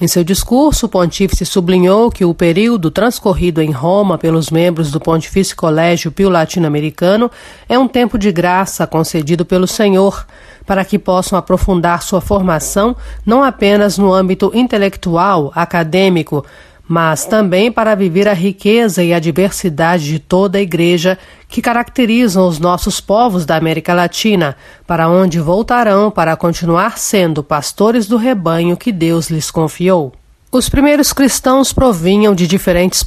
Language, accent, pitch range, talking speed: Portuguese, Brazilian, 170-225 Hz, 145 wpm